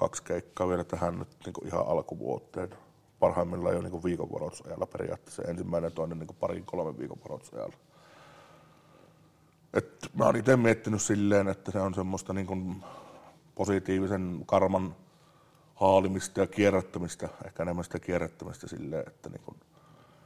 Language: Finnish